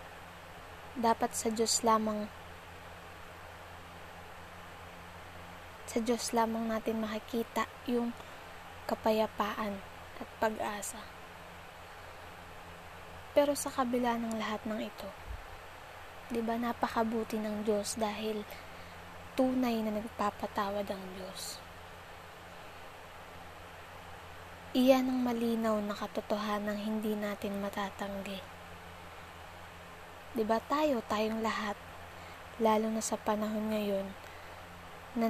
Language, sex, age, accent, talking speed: Filipino, female, 20-39, native, 85 wpm